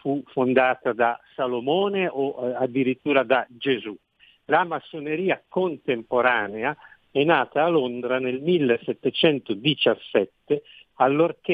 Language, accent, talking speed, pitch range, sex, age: Italian, native, 100 wpm, 120-165 Hz, male, 50-69